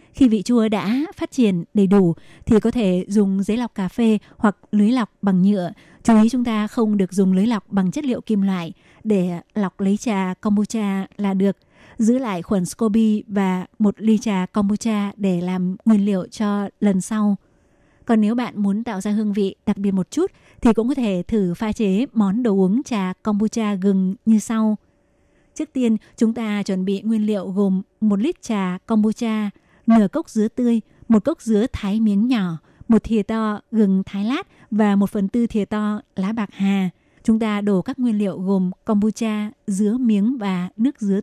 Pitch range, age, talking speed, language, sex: 195-225 Hz, 20-39, 200 wpm, Vietnamese, female